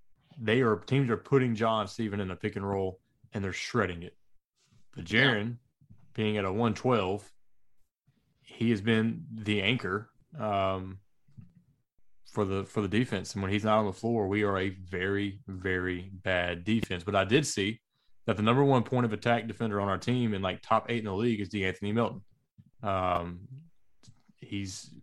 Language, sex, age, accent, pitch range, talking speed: English, male, 20-39, American, 95-115 Hz, 180 wpm